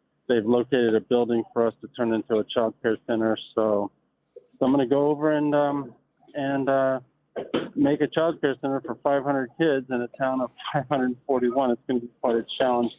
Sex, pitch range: male, 110-125 Hz